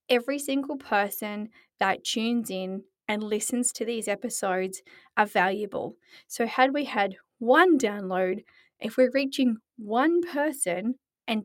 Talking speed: 130 wpm